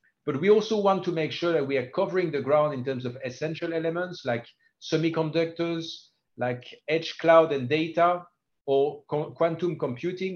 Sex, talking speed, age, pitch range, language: male, 160 wpm, 50-69, 125-165 Hz, English